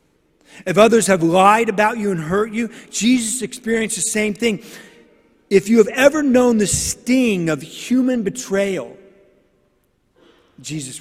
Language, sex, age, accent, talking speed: English, male, 40-59, American, 135 wpm